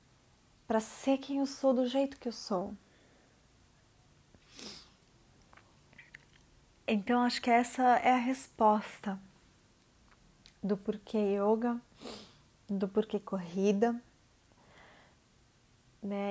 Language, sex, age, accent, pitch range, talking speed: Portuguese, female, 20-39, Brazilian, 200-240 Hz, 90 wpm